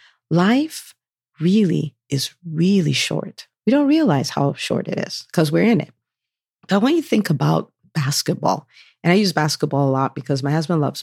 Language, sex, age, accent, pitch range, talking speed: English, female, 40-59, American, 150-215 Hz, 175 wpm